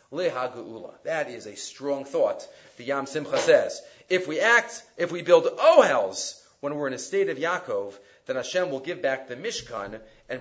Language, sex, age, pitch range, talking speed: English, male, 40-59, 140-235 Hz, 180 wpm